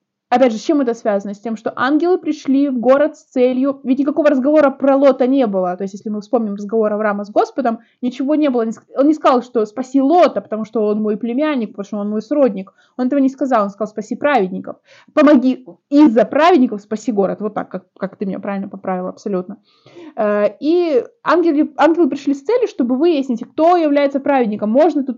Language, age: Russian, 20-39